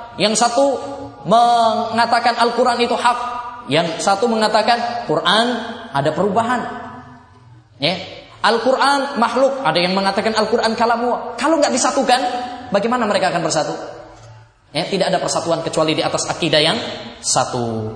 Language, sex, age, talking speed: English, male, 20-39, 125 wpm